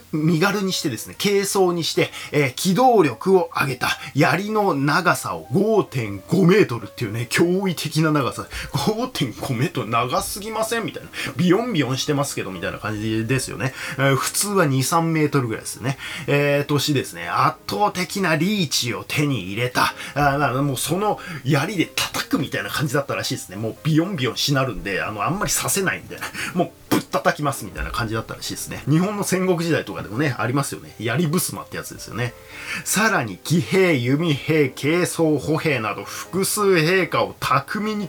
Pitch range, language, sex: 130-175 Hz, Japanese, male